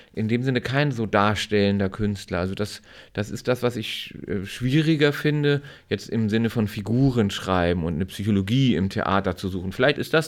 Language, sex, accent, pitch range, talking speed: German, male, German, 100-125 Hz, 185 wpm